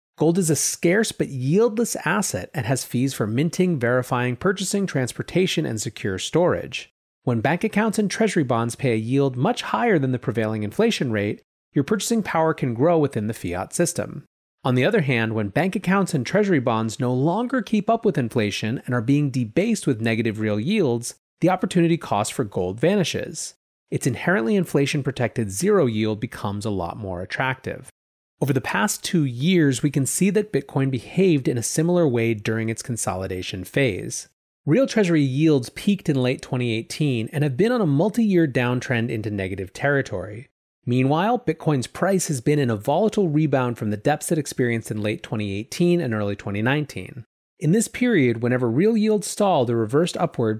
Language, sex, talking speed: English, male, 175 wpm